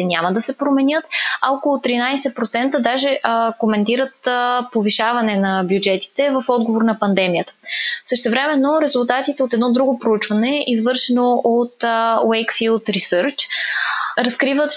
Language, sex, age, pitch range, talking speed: Bulgarian, female, 20-39, 220-260 Hz, 120 wpm